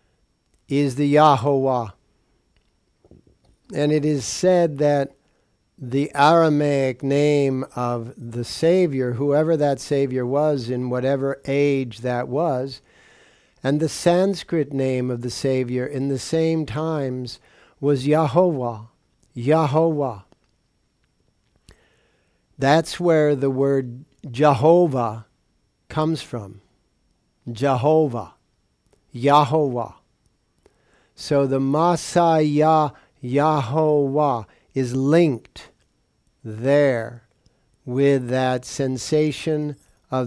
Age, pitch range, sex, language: 50-69, 125-155 Hz, male, English